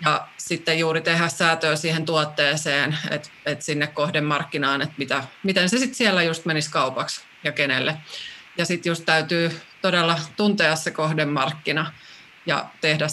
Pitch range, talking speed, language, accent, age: 150-180 Hz, 140 wpm, Finnish, native, 20-39